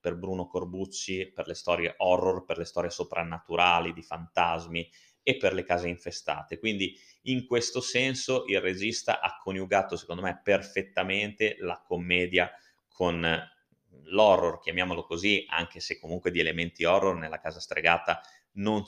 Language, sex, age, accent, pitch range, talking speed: Italian, male, 30-49, native, 85-115 Hz, 145 wpm